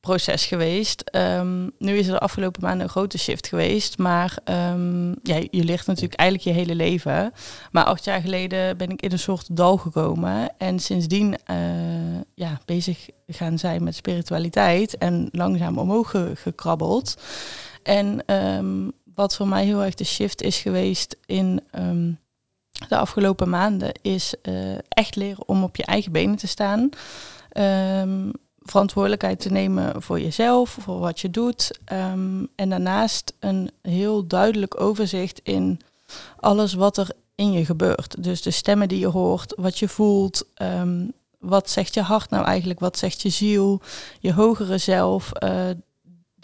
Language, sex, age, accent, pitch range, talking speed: Dutch, female, 20-39, Dutch, 170-200 Hz, 155 wpm